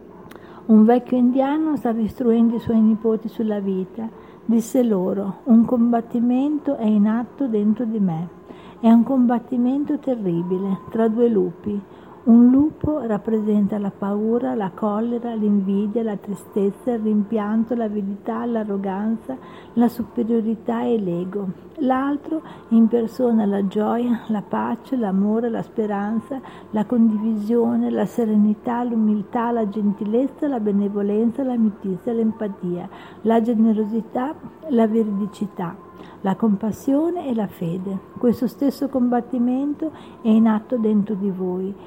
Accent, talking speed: native, 120 wpm